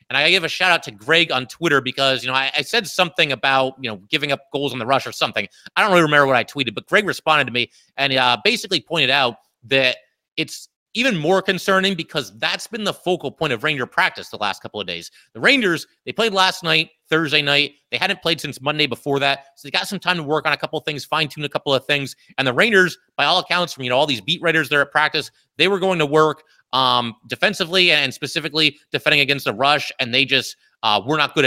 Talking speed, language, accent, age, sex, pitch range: 255 wpm, English, American, 30-49, male, 130-160 Hz